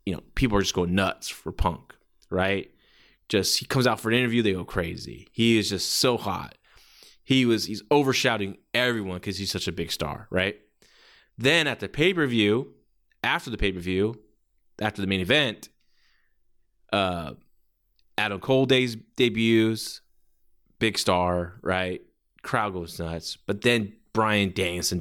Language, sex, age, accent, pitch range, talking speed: English, male, 20-39, American, 95-130 Hz, 150 wpm